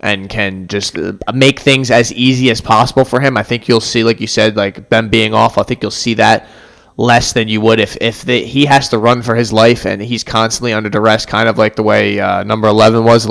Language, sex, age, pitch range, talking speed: English, male, 20-39, 105-120 Hz, 250 wpm